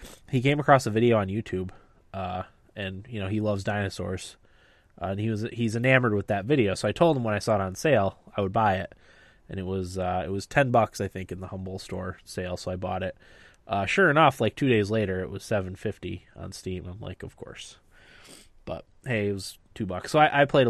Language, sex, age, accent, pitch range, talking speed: English, male, 20-39, American, 95-125 Hz, 240 wpm